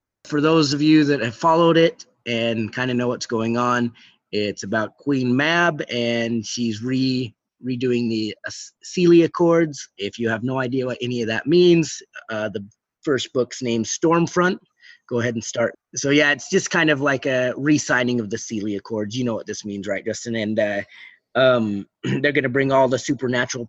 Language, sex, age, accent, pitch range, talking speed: English, male, 30-49, American, 115-145 Hz, 195 wpm